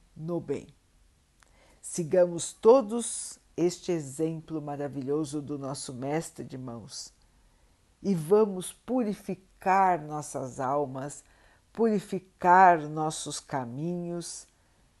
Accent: Brazilian